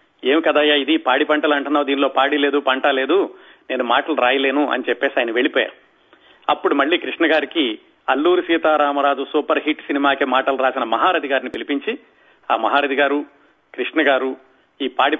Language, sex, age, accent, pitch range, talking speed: Telugu, male, 40-59, native, 140-170 Hz, 155 wpm